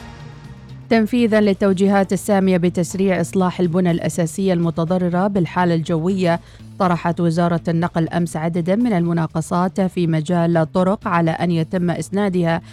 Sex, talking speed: female, 115 wpm